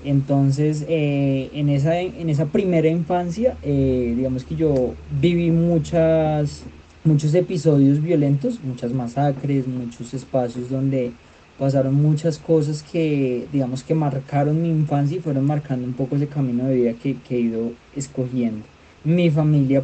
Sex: male